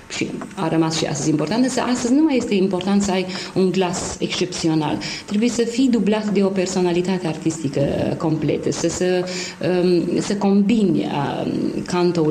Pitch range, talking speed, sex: 160-205 Hz, 150 wpm, female